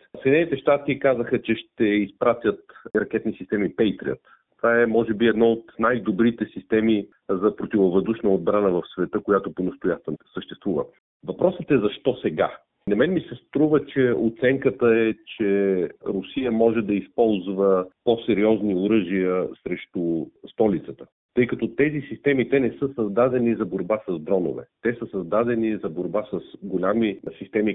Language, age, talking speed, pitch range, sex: Bulgarian, 40-59, 145 wpm, 100-125 Hz, male